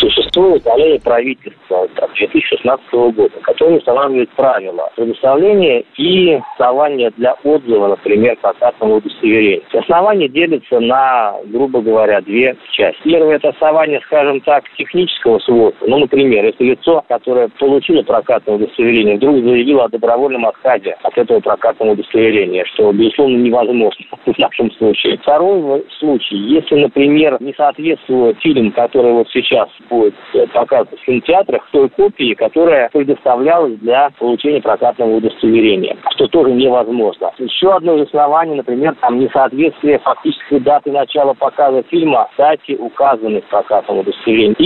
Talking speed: 130 wpm